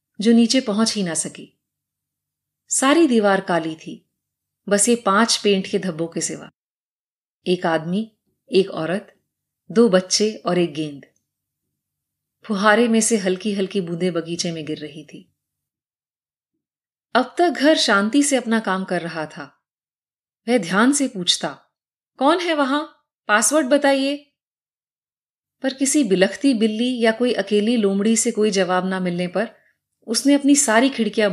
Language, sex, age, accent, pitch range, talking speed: Hindi, female, 30-49, native, 185-260 Hz, 145 wpm